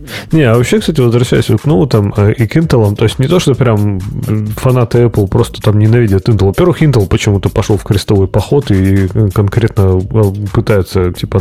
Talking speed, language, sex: 180 wpm, Russian, male